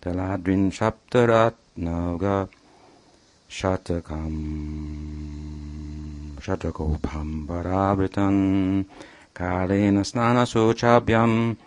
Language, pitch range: English, 85-100 Hz